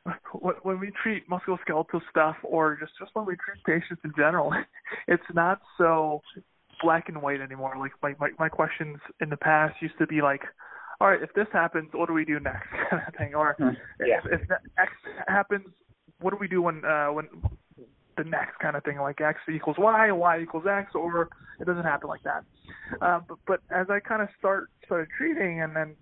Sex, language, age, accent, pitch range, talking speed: male, English, 20-39, American, 155-180 Hz, 205 wpm